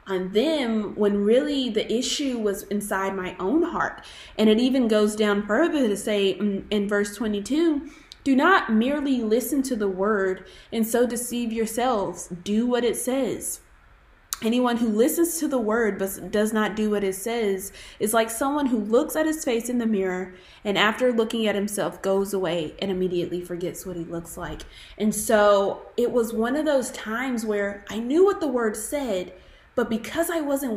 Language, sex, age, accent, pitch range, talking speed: English, female, 20-39, American, 195-240 Hz, 180 wpm